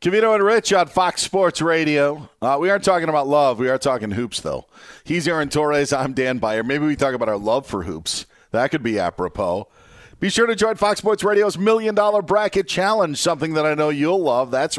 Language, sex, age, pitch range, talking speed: English, male, 40-59, 120-160 Hz, 220 wpm